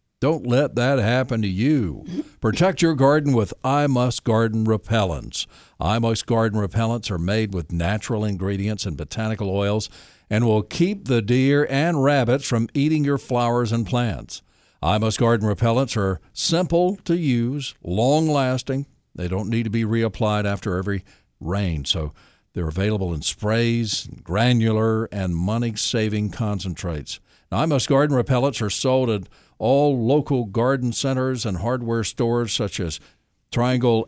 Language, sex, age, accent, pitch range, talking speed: English, male, 60-79, American, 100-130 Hz, 145 wpm